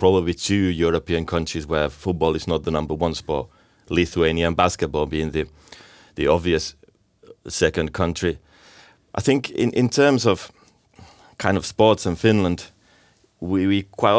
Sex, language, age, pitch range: male, Finnish, 30-49, 85-100 Hz